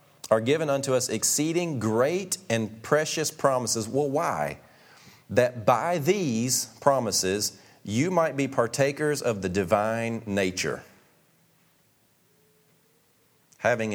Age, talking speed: 40-59, 105 wpm